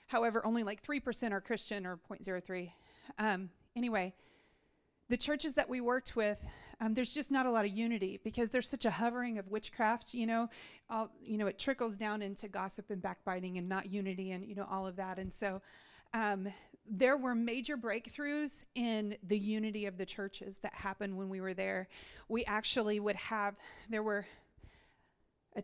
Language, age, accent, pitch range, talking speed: English, 30-49, American, 200-235 Hz, 190 wpm